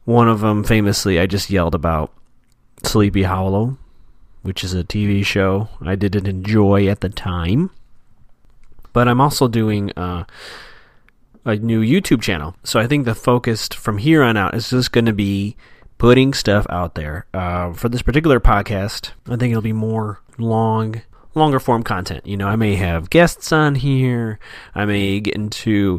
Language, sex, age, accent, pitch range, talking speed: English, male, 30-49, American, 95-120 Hz, 170 wpm